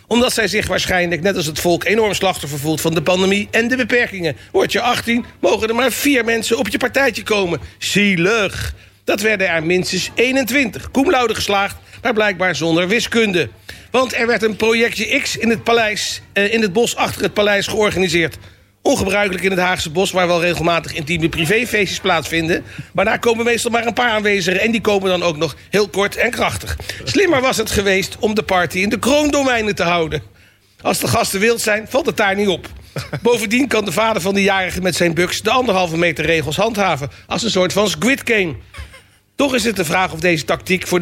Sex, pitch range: male, 175-230 Hz